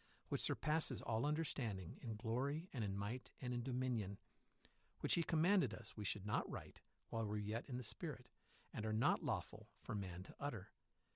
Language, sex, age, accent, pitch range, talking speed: English, male, 50-69, American, 105-130 Hz, 185 wpm